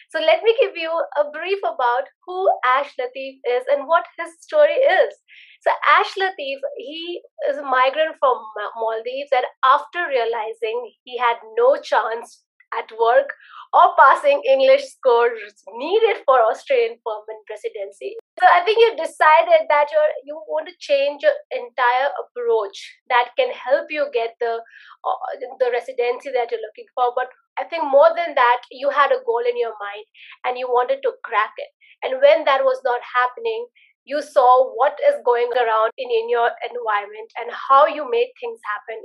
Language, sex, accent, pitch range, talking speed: English, female, Indian, 250-340 Hz, 170 wpm